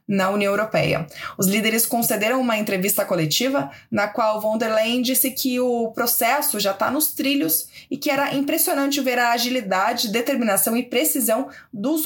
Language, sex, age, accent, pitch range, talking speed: Portuguese, female, 20-39, Brazilian, 200-270 Hz, 165 wpm